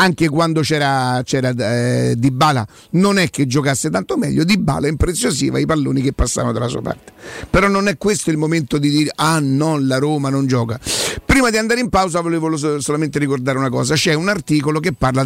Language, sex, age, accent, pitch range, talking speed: Italian, male, 50-69, native, 130-160 Hz, 200 wpm